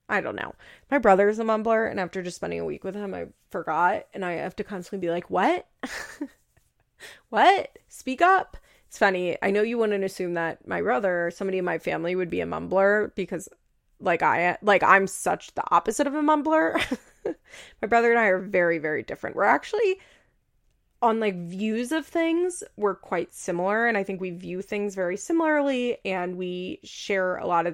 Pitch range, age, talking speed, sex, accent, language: 180-220 Hz, 20-39, 195 wpm, female, American, English